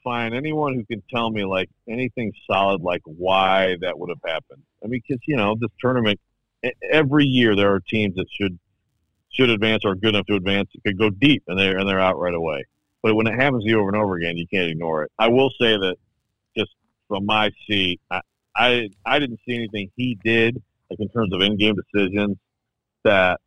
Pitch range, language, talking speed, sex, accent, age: 95-115 Hz, English, 215 wpm, male, American, 50-69